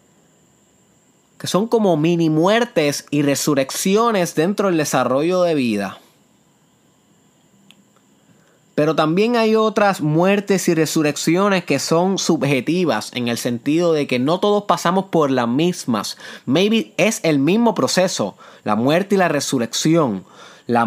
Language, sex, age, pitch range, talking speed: Spanish, male, 20-39, 140-185 Hz, 125 wpm